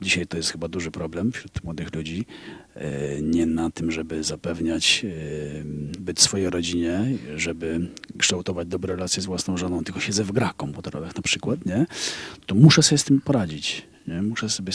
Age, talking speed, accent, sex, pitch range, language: 40-59, 180 wpm, native, male, 85-115 Hz, Polish